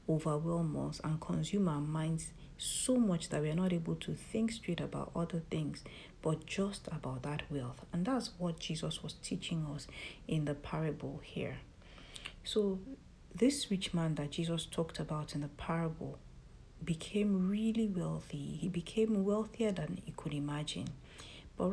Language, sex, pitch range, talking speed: English, female, 150-185 Hz, 155 wpm